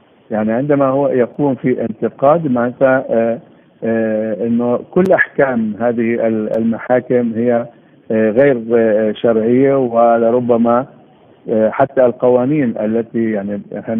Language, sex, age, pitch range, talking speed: Arabic, male, 50-69, 110-130 Hz, 110 wpm